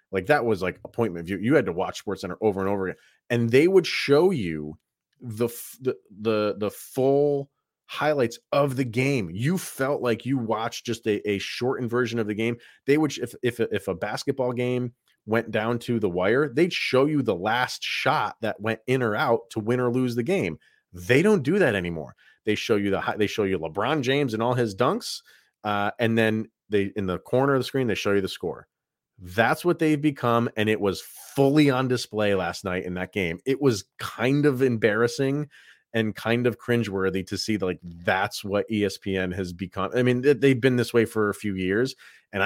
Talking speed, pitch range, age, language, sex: 210 wpm, 100-130 Hz, 30-49, English, male